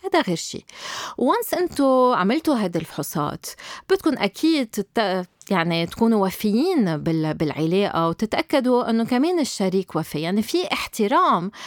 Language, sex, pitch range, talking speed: Arabic, female, 180-250 Hz, 120 wpm